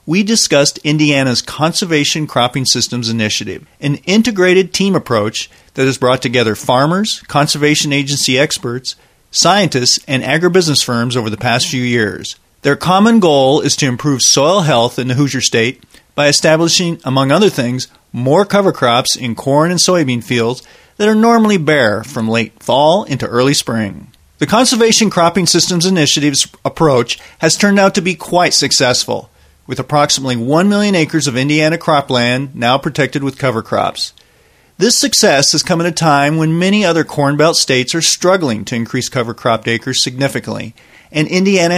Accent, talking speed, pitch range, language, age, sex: American, 160 wpm, 125-170 Hz, English, 40-59, male